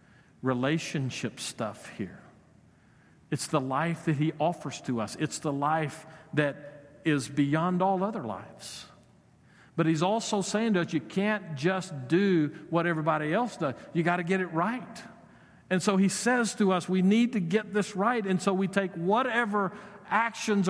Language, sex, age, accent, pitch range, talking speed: English, male, 50-69, American, 130-195 Hz, 170 wpm